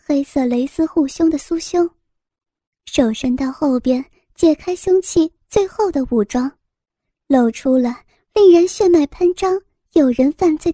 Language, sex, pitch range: Chinese, male, 260-345 Hz